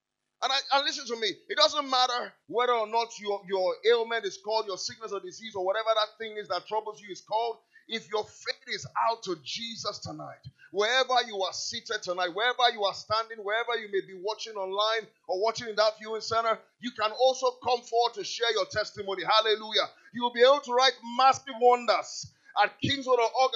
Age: 30-49